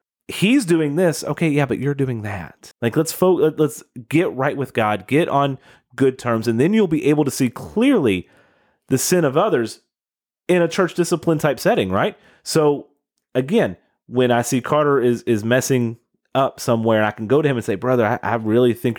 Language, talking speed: English, 200 wpm